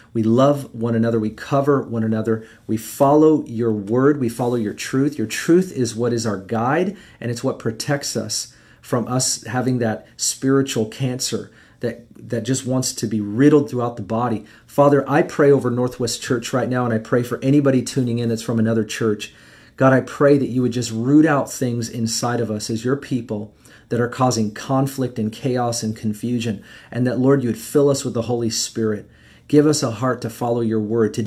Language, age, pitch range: English, 40-59, 115-140 Hz